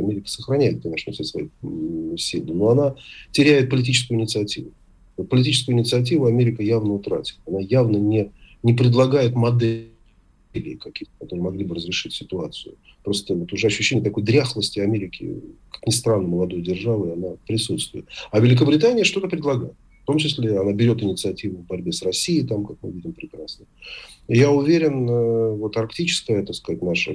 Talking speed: 145 wpm